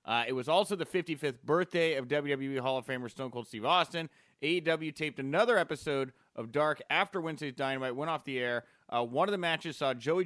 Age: 30-49